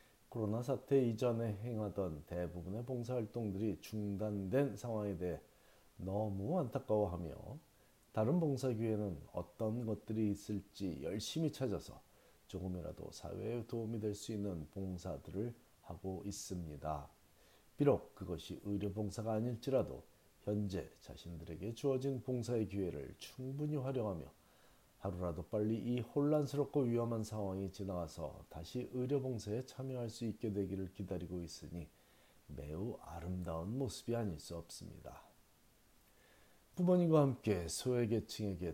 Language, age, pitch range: Korean, 40-59, 90-120 Hz